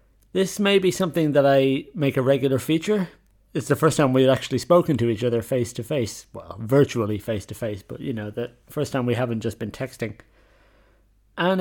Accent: British